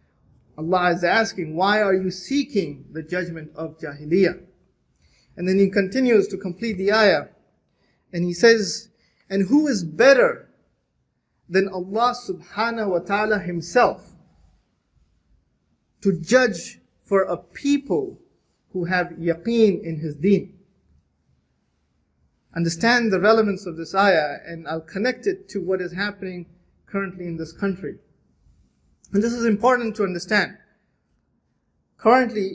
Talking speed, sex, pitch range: 125 wpm, male, 155-195 Hz